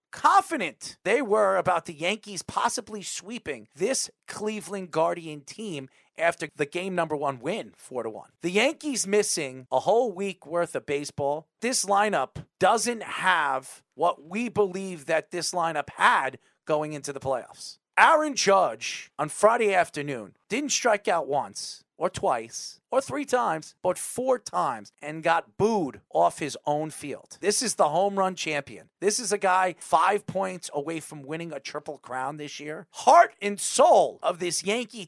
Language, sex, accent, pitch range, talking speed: English, male, American, 155-210 Hz, 160 wpm